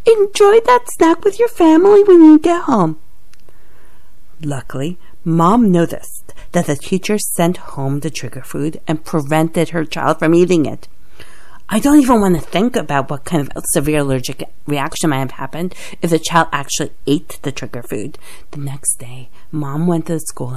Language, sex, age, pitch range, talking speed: English, female, 40-59, 145-205 Hz, 175 wpm